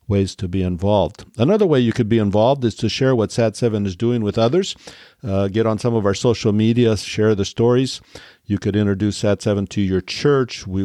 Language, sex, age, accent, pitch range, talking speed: English, male, 50-69, American, 95-115 Hz, 210 wpm